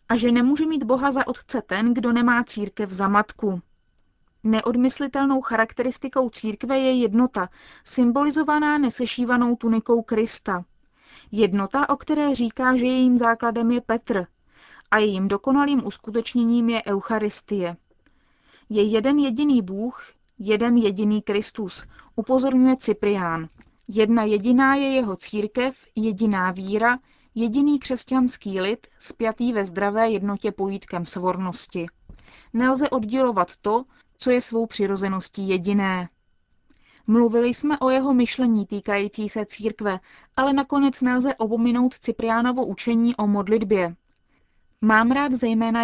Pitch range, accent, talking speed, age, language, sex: 210-255 Hz, native, 115 wpm, 20-39, Czech, female